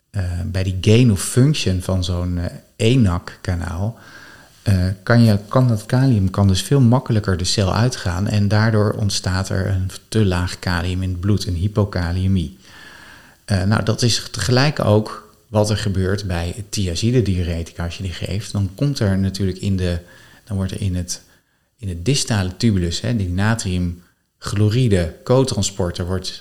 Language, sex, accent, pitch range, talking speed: Dutch, male, Dutch, 90-110 Hz, 160 wpm